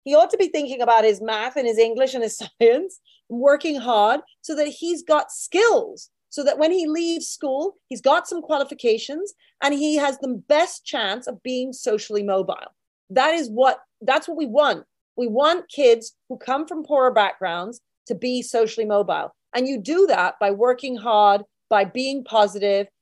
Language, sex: English, female